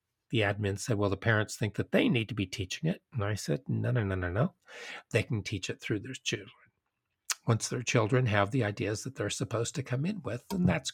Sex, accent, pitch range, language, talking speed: male, American, 105-140 Hz, English, 240 wpm